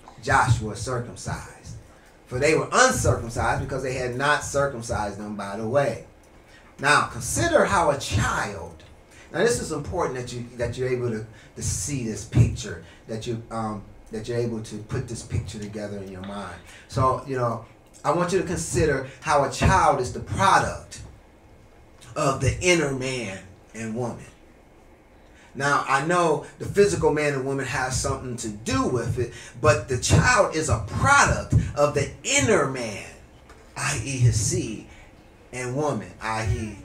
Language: English